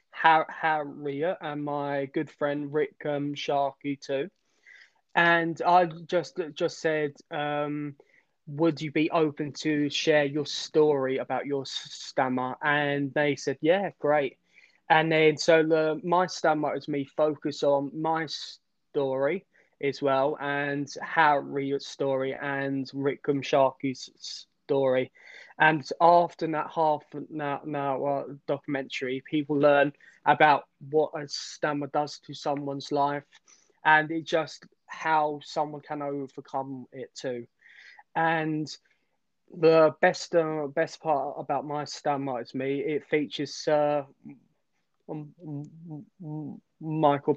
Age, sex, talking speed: 20-39, male, 120 wpm